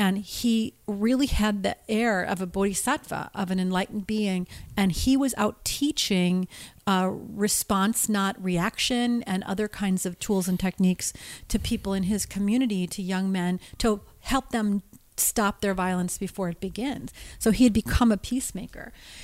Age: 40-59